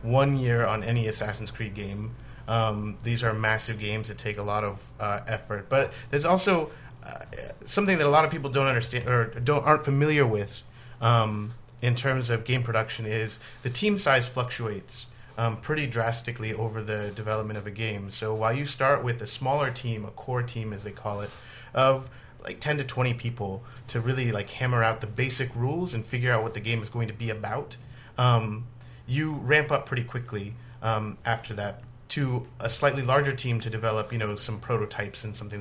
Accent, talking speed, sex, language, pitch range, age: American, 200 wpm, male, English, 110-125 Hz, 30-49